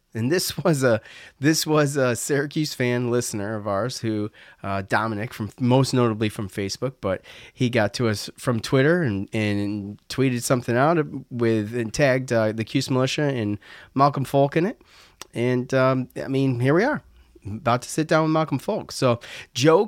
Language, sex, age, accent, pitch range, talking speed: English, male, 30-49, American, 115-160 Hz, 180 wpm